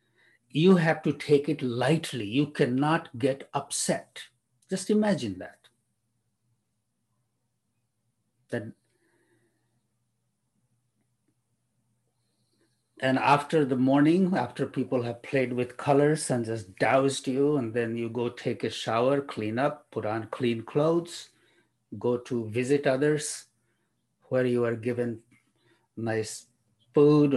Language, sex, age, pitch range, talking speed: English, male, 50-69, 115-140 Hz, 110 wpm